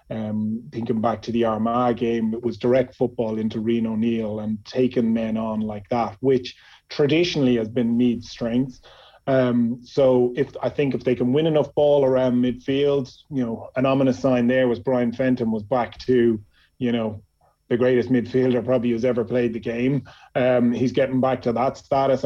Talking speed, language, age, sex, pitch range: 185 wpm, English, 30-49, male, 120-130 Hz